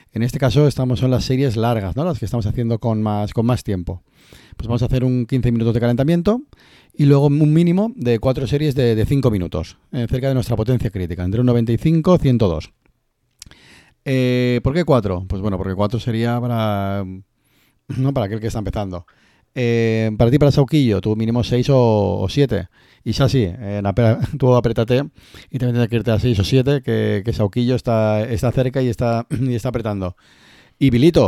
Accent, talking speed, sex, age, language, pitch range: Spanish, 195 wpm, male, 30-49, Spanish, 105-130 Hz